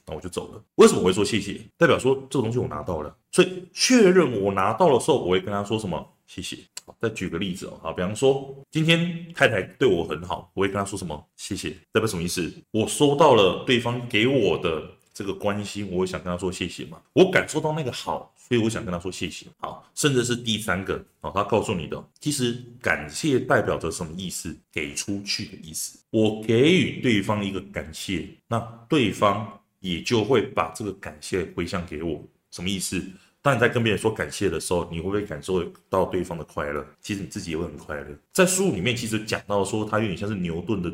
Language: Chinese